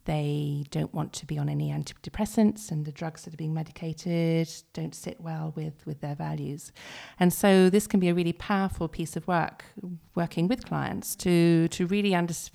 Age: 40-59